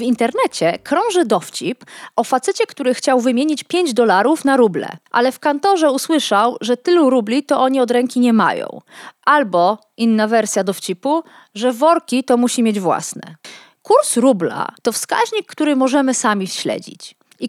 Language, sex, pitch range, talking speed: Polish, female, 220-305 Hz, 155 wpm